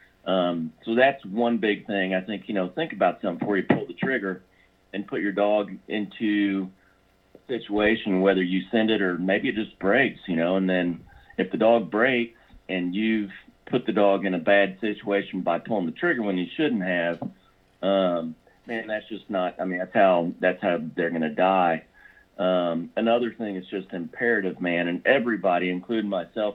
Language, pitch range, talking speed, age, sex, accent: English, 90-105 Hz, 190 wpm, 40-59, male, American